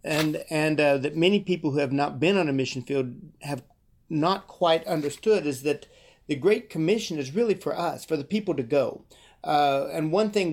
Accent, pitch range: American, 140-175 Hz